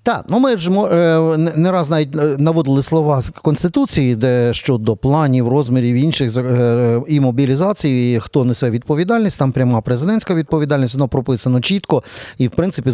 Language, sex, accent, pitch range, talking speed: Ukrainian, male, native, 125-160 Hz, 150 wpm